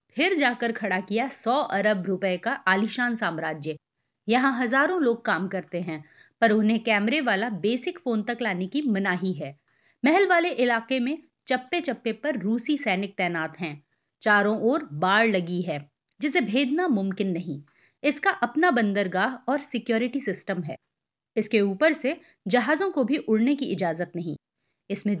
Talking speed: 155 wpm